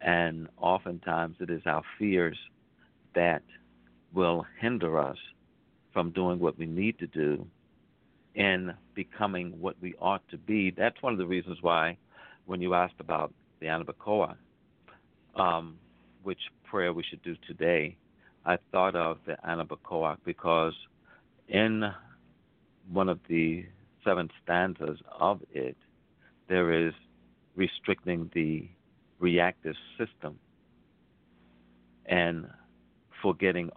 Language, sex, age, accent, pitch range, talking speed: English, male, 60-79, American, 70-90 Hz, 115 wpm